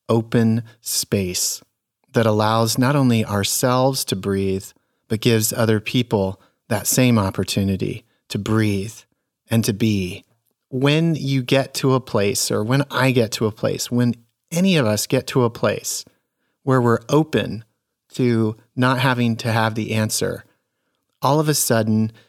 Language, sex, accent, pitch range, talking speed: English, male, American, 110-130 Hz, 150 wpm